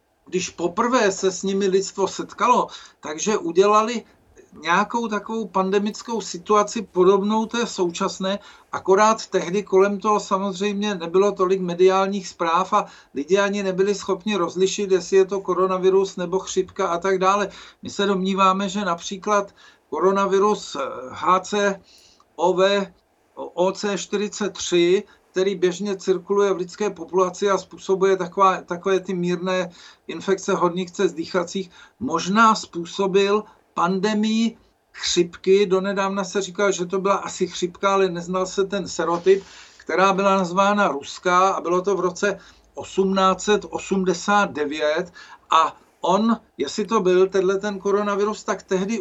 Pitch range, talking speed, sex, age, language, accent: 185-205 Hz, 120 wpm, male, 50-69, Czech, native